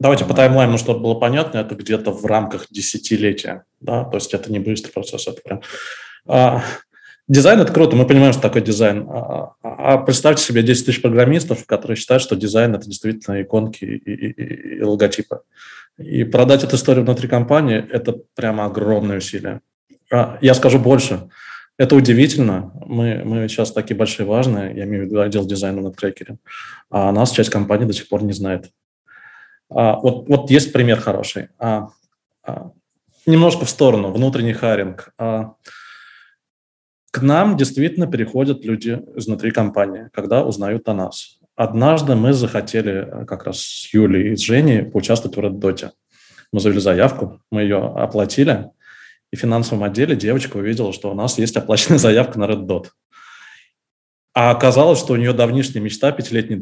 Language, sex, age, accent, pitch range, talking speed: Russian, male, 20-39, native, 105-130 Hz, 165 wpm